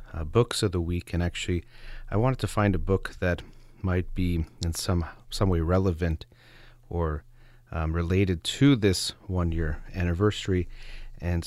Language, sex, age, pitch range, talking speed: English, male, 30-49, 85-110 Hz, 150 wpm